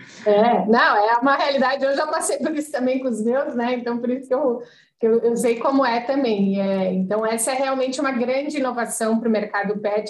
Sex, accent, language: female, Brazilian, Portuguese